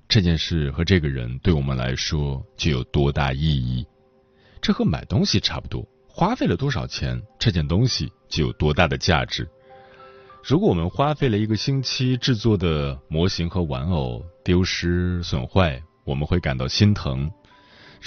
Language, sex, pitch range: Chinese, male, 75-115 Hz